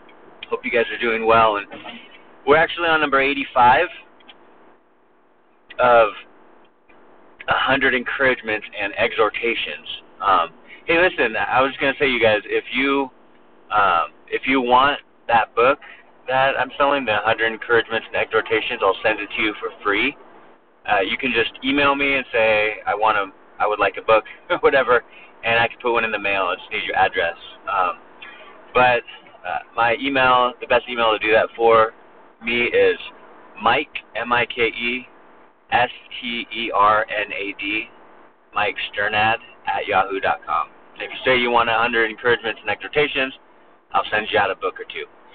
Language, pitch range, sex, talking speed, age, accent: English, 115-170 Hz, male, 160 wpm, 30-49, American